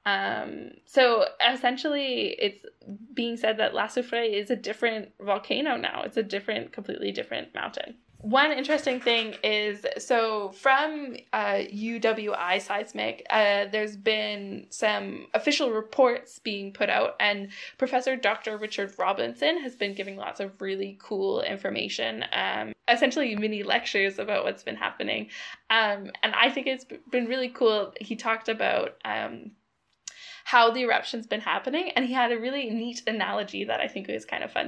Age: 10-29